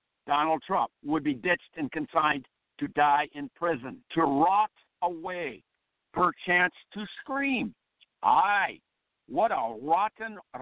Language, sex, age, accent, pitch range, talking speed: English, male, 60-79, American, 160-230 Hz, 120 wpm